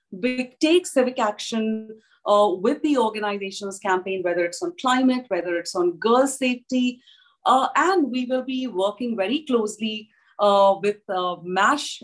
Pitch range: 195-250 Hz